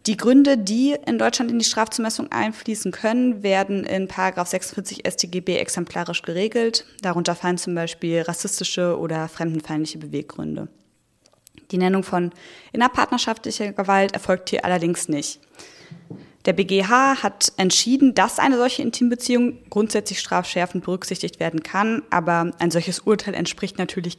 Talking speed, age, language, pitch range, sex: 130 wpm, 20-39, German, 170-210 Hz, female